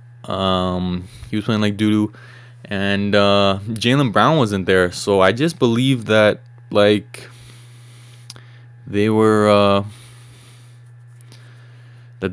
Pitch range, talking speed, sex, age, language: 95-120 Hz, 105 wpm, male, 20-39, English